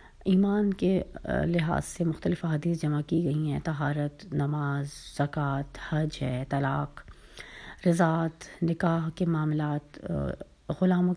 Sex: female